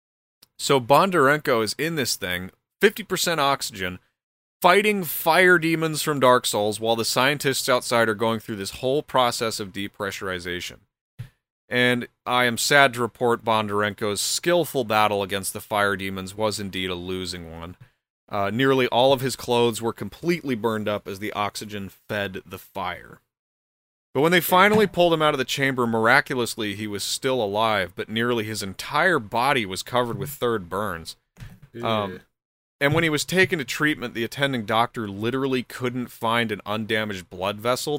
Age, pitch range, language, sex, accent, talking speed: 30-49, 100-135 Hz, English, male, American, 165 wpm